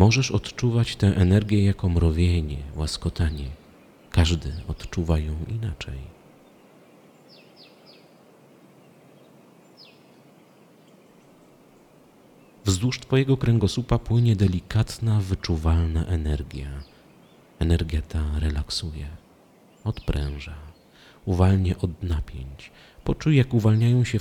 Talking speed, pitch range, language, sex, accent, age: 70 wpm, 75-105 Hz, Polish, male, native, 40-59